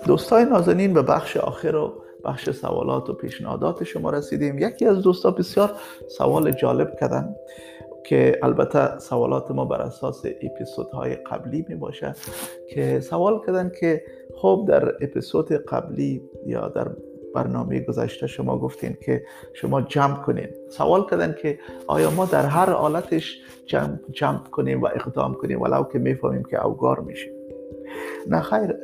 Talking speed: 150 wpm